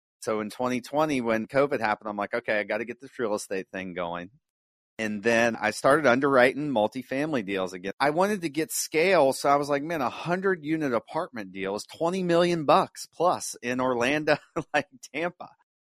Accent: American